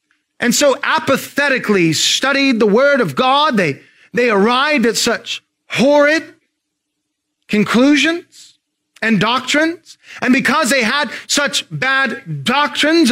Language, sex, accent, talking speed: English, male, American, 110 wpm